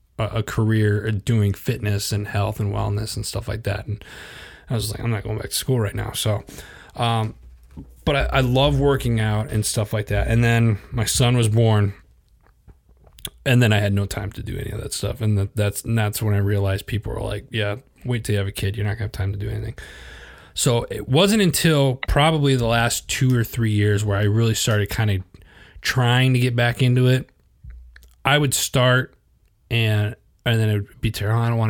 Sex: male